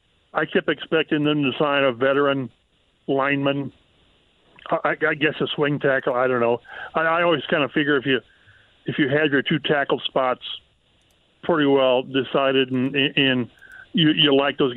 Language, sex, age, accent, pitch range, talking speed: English, male, 50-69, American, 135-165 Hz, 165 wpm